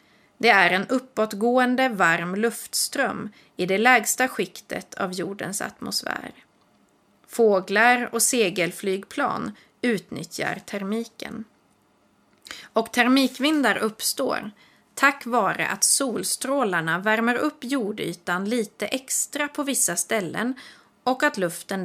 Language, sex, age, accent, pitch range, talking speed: Swedish, female, 30-49, native, 200-250 Hz, 100 wpm